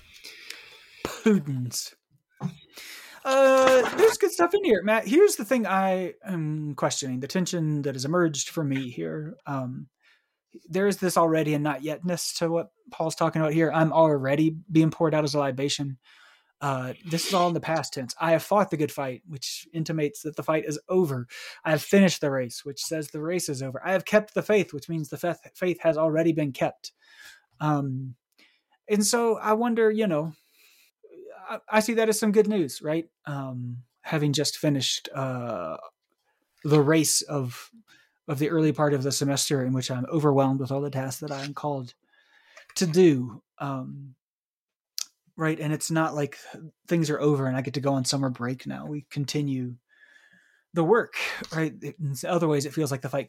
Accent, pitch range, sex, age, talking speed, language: American, 140-180 Hz, male, 30-49, 180 wpm, English